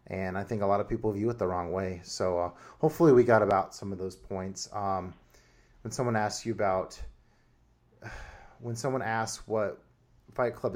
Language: English